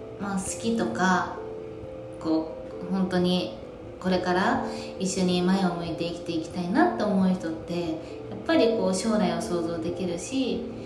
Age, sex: 20-39, female